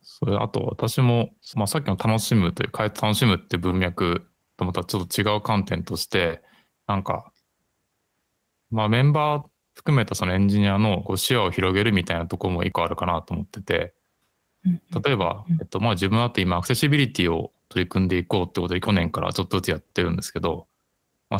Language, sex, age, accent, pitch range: Japanese, male, 20-39, native, 90-130 Hz